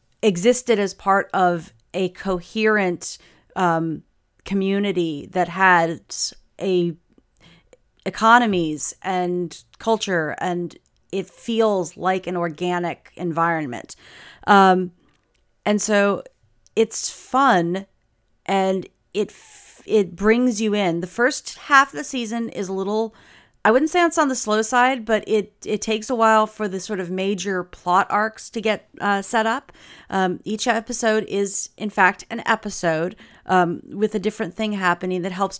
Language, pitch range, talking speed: English, 180-215 Hz, 140 wpm